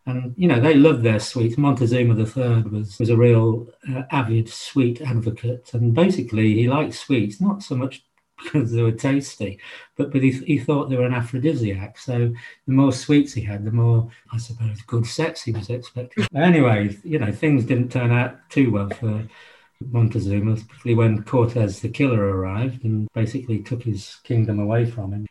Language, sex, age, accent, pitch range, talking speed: English, male, 50-69, British, 110-135 Hz, 185 wpm